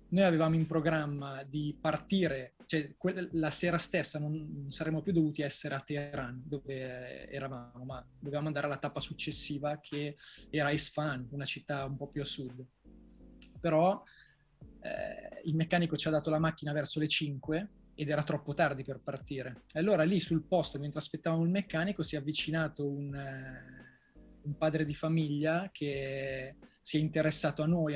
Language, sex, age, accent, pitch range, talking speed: Italian, male, 20-39, native, 140-160 Hz, 165 wpm